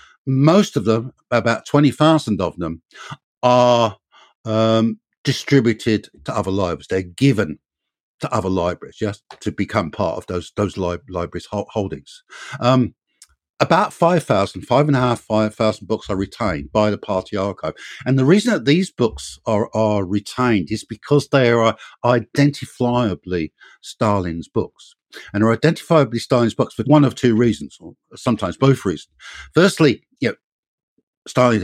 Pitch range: 100-135 Hz